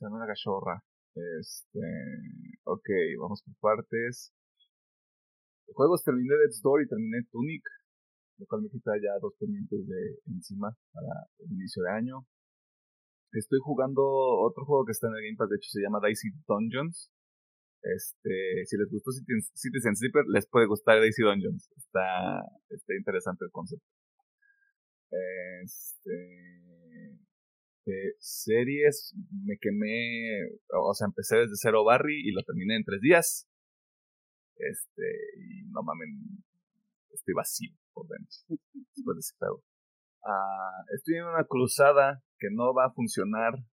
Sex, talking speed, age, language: male, 135 wpm, 30-49, Spanish